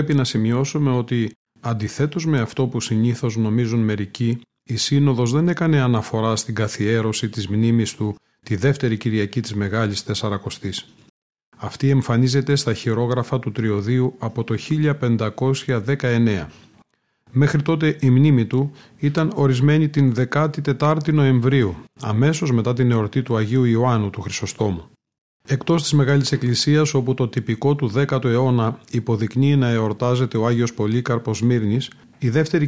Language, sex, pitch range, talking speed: Greek, male, 115-135 Hz, 135 wpm